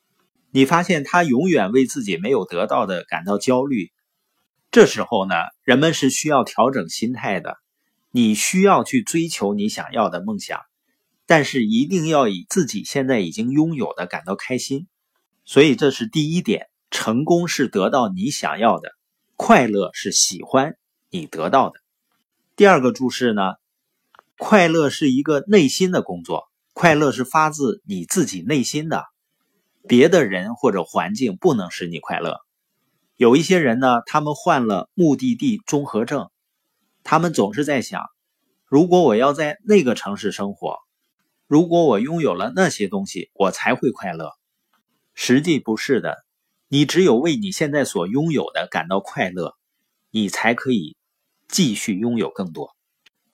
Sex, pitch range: male, 130-195 Hz